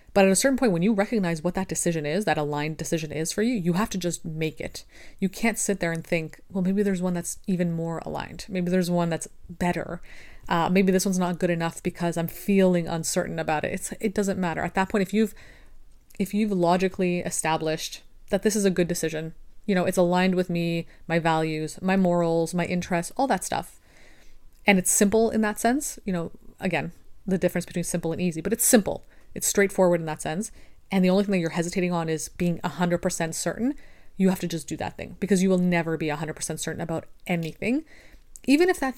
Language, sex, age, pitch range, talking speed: English, female, 30-49, 165-200 Hz, 220 wpm